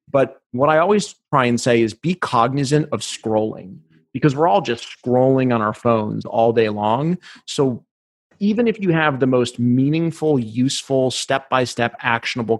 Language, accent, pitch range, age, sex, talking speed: English, American, 110-140 Hz, 30-49, male, 170 wpm